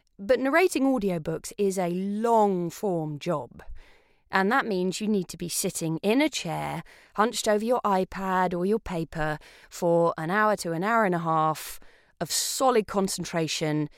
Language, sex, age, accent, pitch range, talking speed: English, female, 20-39, British, 170-230 Hz, 165 wpm